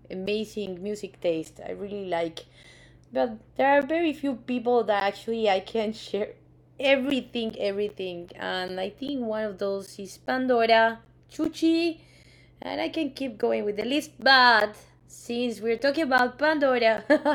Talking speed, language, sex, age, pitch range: 145 wpm, English, female, 20-39, 195-255 Hz